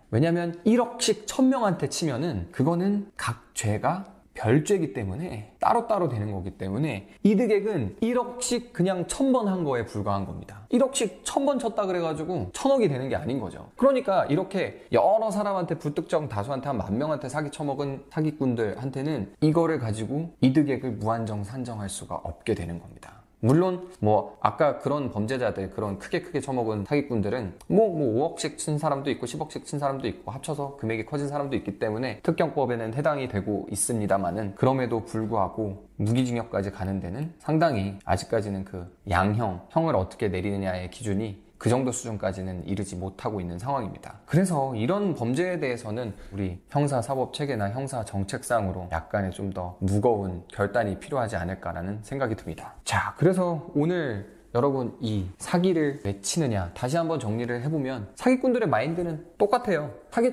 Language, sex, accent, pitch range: Korean, male, native, 100-165 Hz